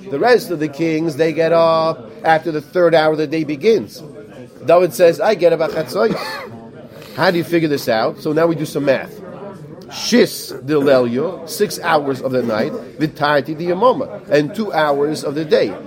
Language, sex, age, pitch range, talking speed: English, male, 40-59, 145-180 Hz, 195 wpm